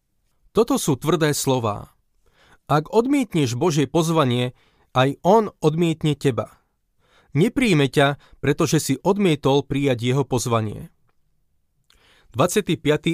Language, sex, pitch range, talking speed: Slovak, male, 130-170 Hz, 95 wpm